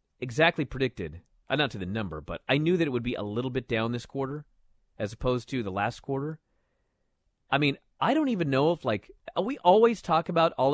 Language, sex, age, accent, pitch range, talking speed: English, male, 30-49, American, 115-175 Hz, 220 wpm